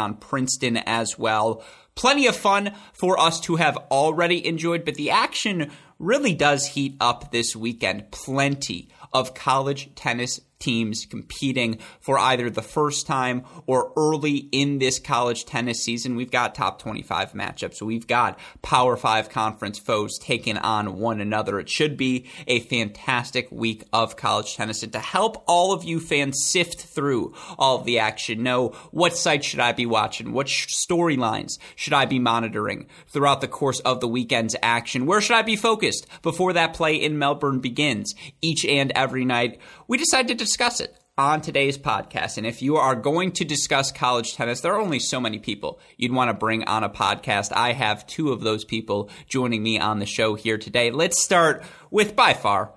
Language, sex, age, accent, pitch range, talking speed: English, male, 30-49, American, 115-150 Hz, 180 wpm